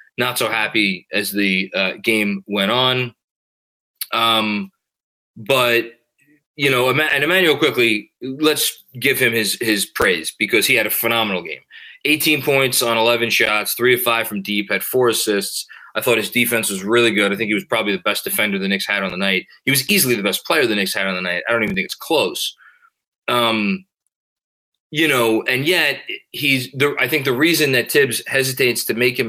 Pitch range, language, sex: 105-130 Hz, English, male